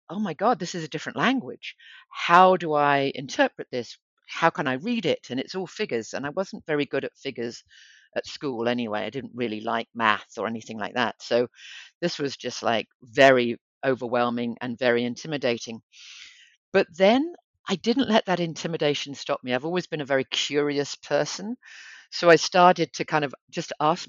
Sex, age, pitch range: female, 50-69, 130-170 Hz